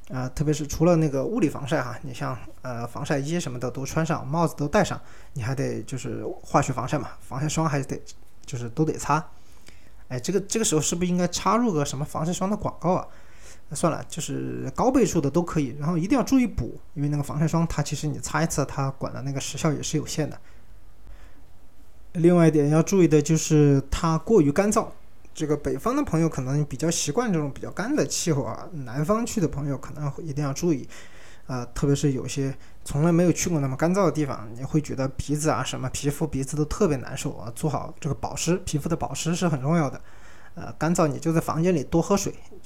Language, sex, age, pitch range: Chinese, male, 20-39, 130-165 Hz